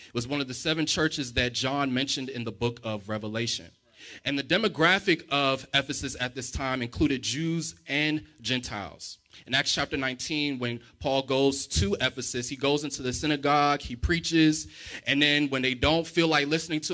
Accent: American